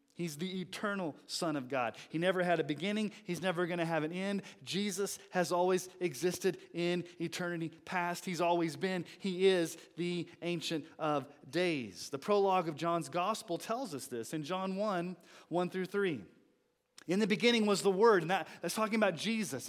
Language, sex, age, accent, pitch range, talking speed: English, male, 30-49, American, 155-205 Hz, 180 wpm